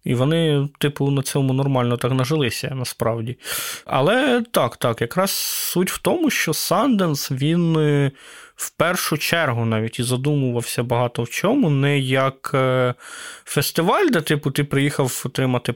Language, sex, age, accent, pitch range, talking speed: Ukrainian, male, 20-39, native, 130-160 Hz, 135 wpm